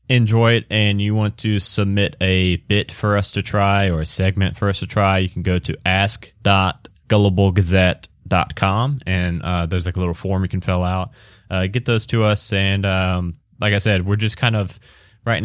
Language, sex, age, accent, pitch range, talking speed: English, male, 20-39, American, 95-115 Hz, 200 wpm